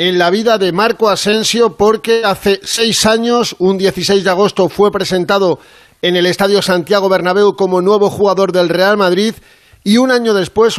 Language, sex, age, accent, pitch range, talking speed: Spanish, male, 40-59, Spanish, 180-210 Hz, 170 wpm